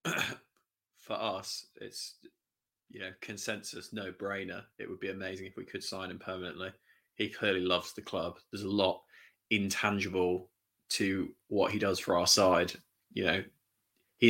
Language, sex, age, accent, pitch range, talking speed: English, male, 20-39, British, 95-110 Hz, 155 wpm